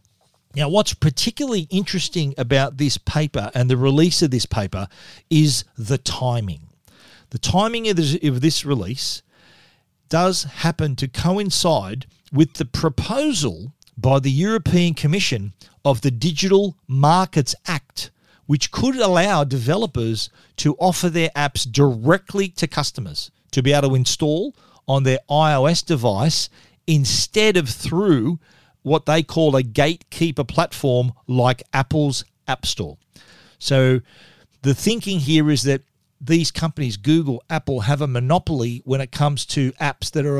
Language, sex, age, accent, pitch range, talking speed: English, male, 40-59, Australian, 130-160 Hz, 135 wpm